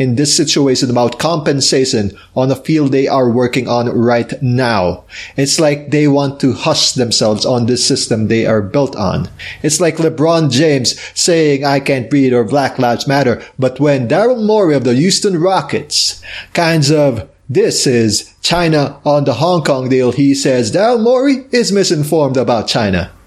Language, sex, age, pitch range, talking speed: English, male, 30-49, 120-155 Hz, 170 wpm